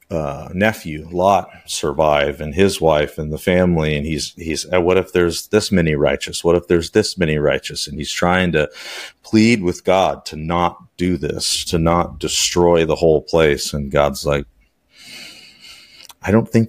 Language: English